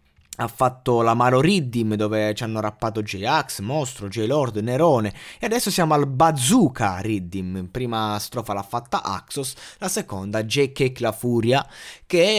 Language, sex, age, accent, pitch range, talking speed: Italian, male, 20-39, native, 115-160 Hz, 140 wpm